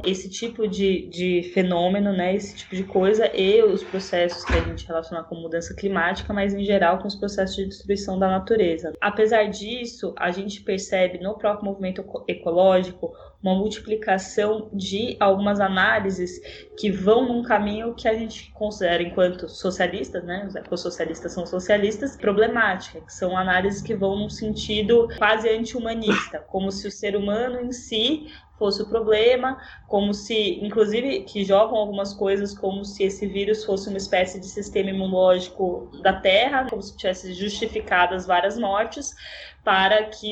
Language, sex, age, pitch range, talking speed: Portuguese, female, 20-39, 190-220 Hz, 160 wpm